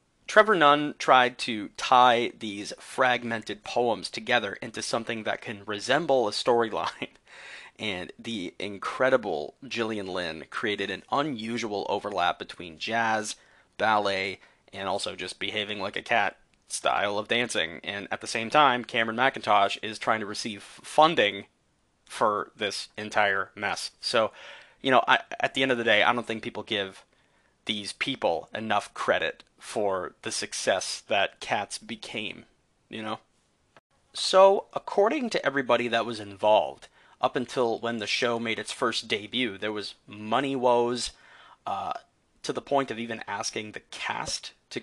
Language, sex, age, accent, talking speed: English, male, 30-49, American, 145 wpm